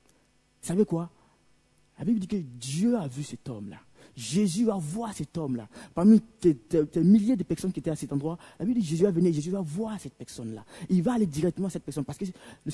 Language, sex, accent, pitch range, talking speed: French, male, French, 150-225 Hz, 225 wpm